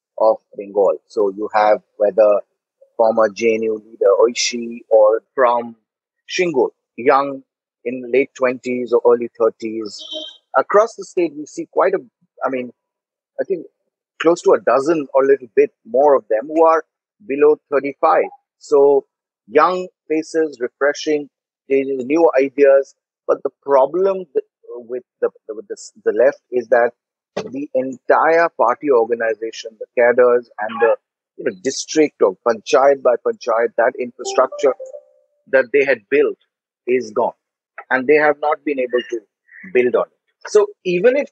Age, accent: 30-49, Indian